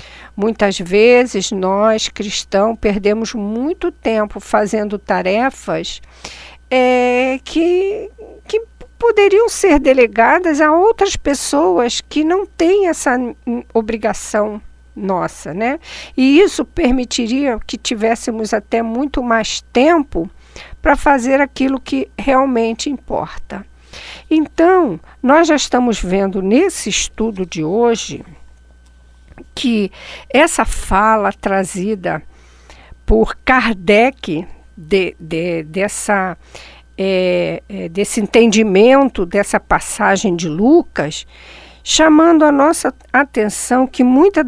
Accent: Brazilian